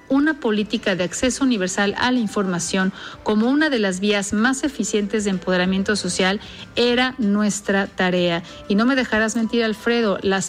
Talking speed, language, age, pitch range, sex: 160 wpm, Spanish, 50-69, 185-230 Hz, female